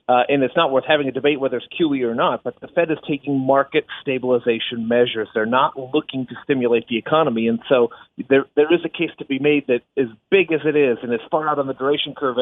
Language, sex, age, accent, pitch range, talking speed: English, male, 40-59, American, 125-155 Hz, 250 wpm